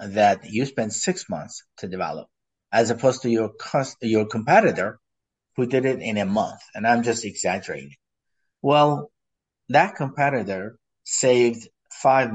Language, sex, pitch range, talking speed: English, male, 110-145 Hz, 135 wpm